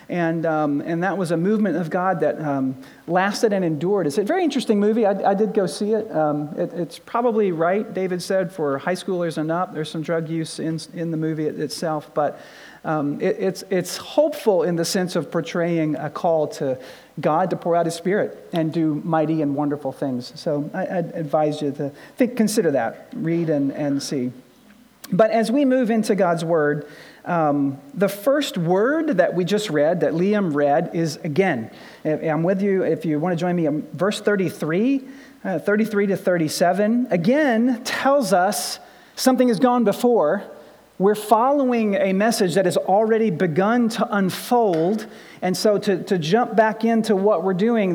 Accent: American